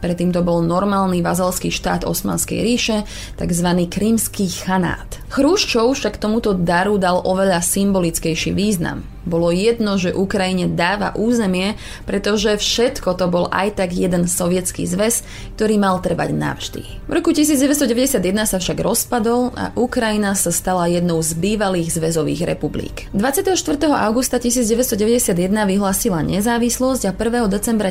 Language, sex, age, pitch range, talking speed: Slovak, female, 20-39, 180-230 Hz, 130 wpm